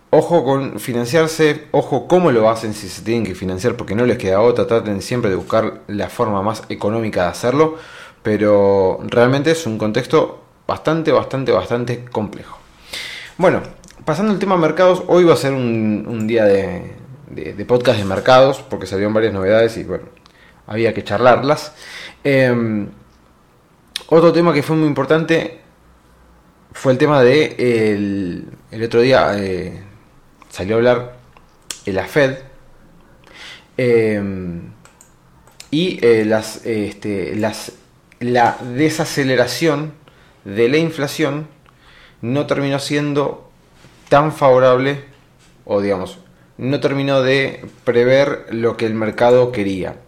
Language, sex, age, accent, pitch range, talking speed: Spanish, male, 30-49, Argentinian, 105-140 Hz, 135 wpm